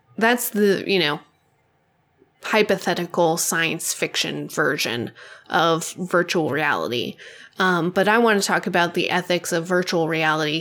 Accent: American